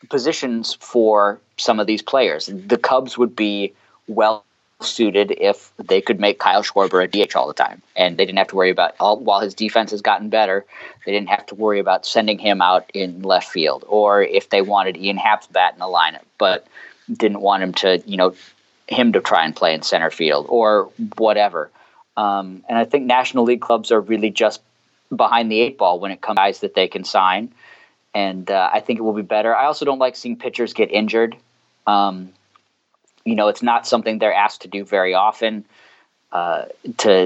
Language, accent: English, American